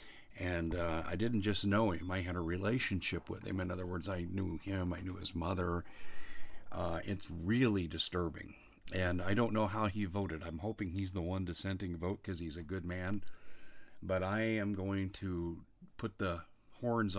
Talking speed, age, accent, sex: 190 wpm, 50-69, American, male